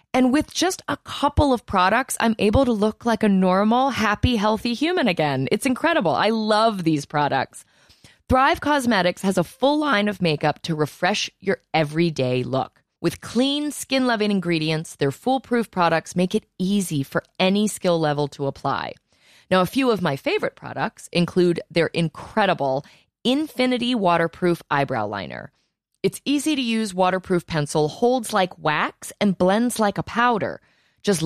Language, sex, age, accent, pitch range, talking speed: English, female, 20-39, American, 150-220 Hz, 155 wpm